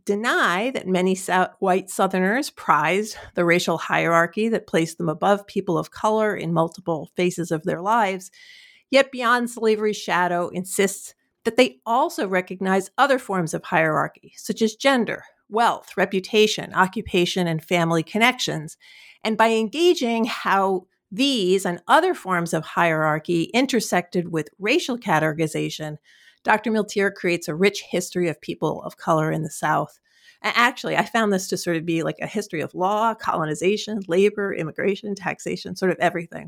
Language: English